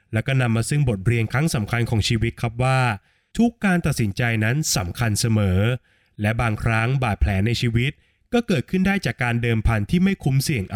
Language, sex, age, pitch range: Thai, male, 20-39, 110-150 Hz